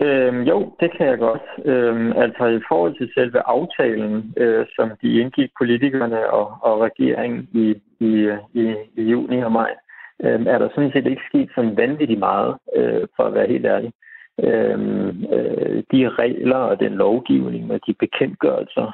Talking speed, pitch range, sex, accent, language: 170 wpm, 110-155 Hz, male, native, Danish